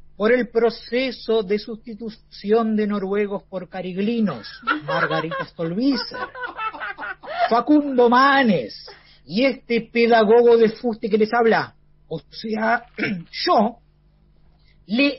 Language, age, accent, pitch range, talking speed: Spanish, 40-59, Argentinian, 190-235 Hz, 100 wpm